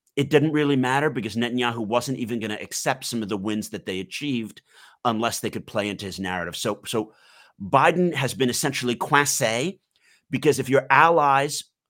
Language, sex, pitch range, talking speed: English, male, 105-135 Hz, 180 wpm